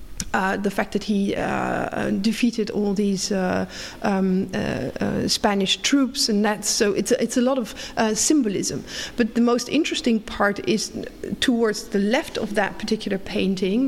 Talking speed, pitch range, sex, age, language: 160 wpm, 210-245 Hz, female, 50-69, English